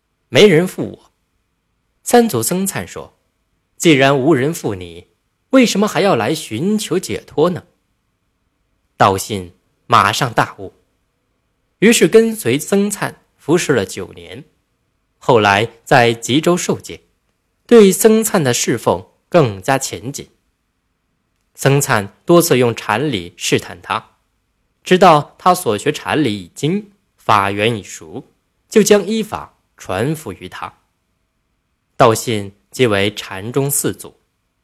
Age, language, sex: 20-39, Chinese, male